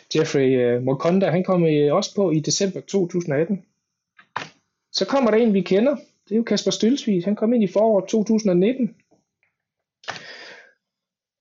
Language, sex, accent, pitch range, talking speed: Danish, male, native, 145-205 Hz, 145 wpm